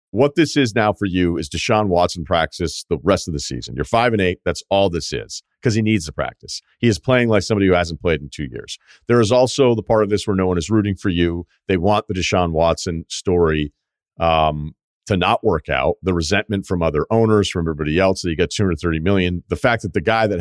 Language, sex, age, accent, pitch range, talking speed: English, male, 40-59, American, 85-110 Hz, 240 wpm